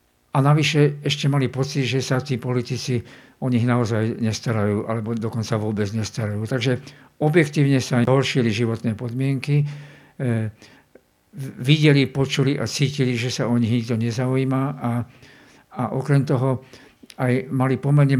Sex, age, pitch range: male, 50-69, 120-135 Hz